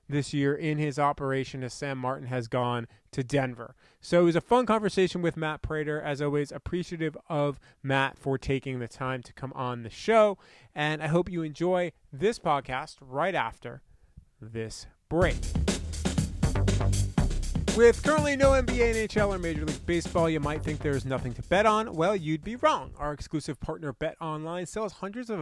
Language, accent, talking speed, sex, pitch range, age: English, American, 175 wpm, male, 135-190 Hz, 30-49